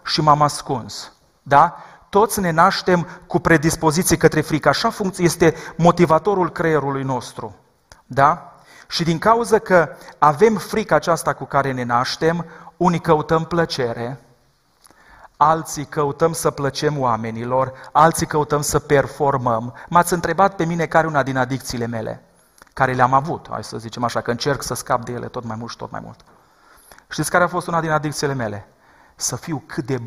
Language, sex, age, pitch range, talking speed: Romanian, male, 40-59, 135-180 Hz, 160 wpm